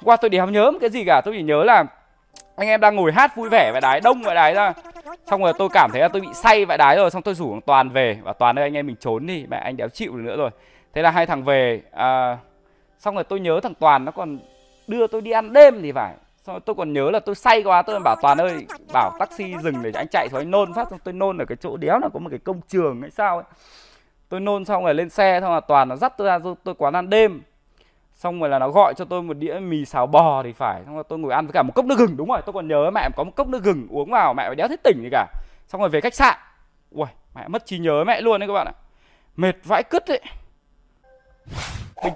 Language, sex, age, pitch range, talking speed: Vietnamese, male, 20-39, 175-245 Hz, 290 wpm